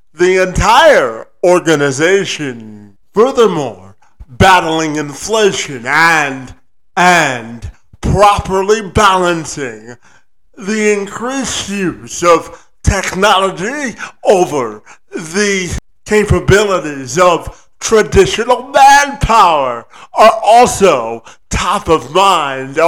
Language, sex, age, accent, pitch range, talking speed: English, male, 50-69, American, 140-215 Hz, 70 wpm